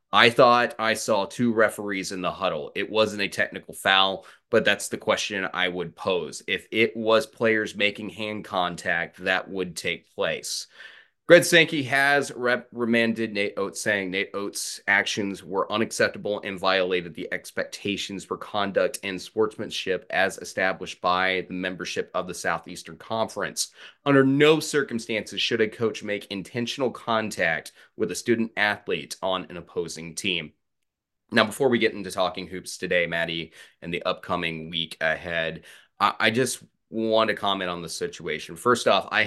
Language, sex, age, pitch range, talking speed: English, male, 30-49, 90-115 Hz, 155 wpm